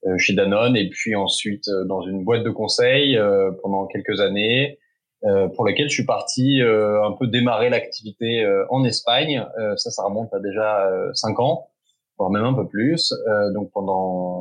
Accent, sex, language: French, male, French